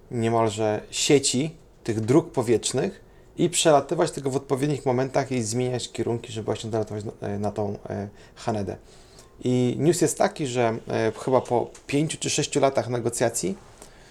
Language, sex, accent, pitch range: Polish, male, native, 115-135 Hz